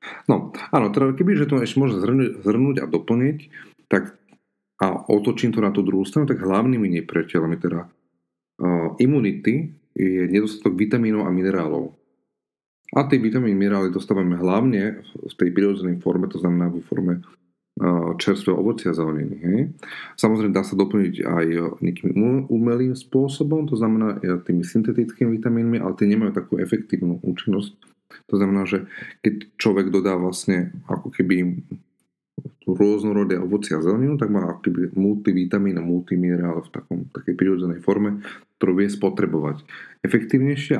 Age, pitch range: 40-59, 90-110 Hz